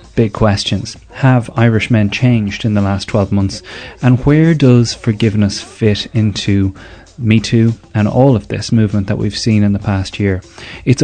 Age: 30-49